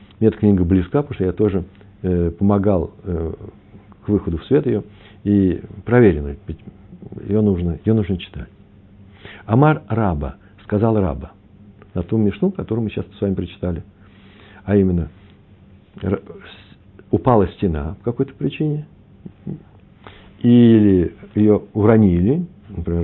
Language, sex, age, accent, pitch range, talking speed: Russian, male, 60-79, native, 95-120 Hz, 120 wpm